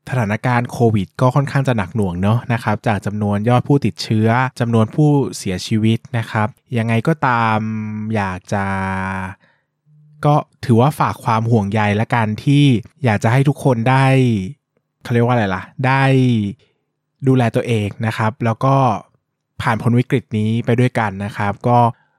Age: 20-39